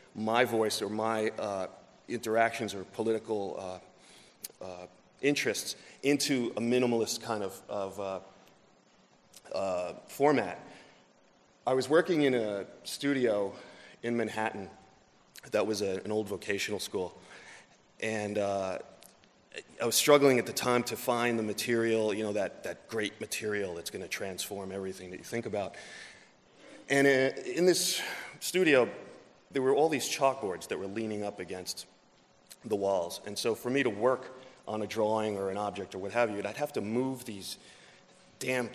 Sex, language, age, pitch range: male, English, 30-49, 105-130 Hz